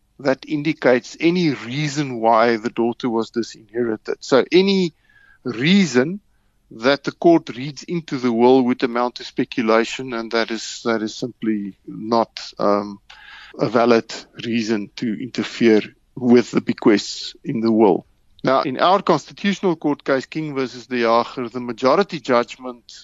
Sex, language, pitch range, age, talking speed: male, English, 120-150 Hz, 50-69, 145 wpm